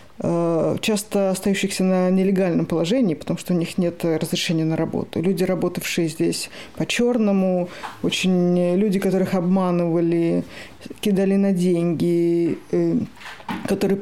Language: Russian